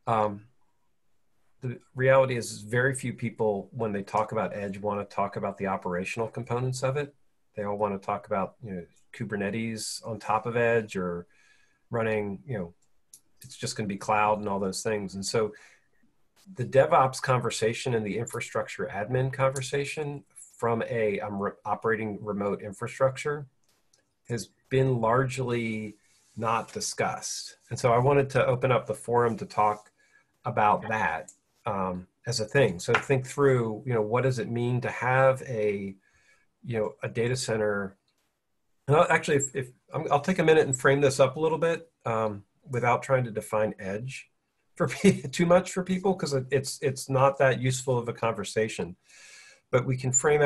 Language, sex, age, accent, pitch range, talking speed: English, male, 40-59, American, 105-135 Hz, 170 wpm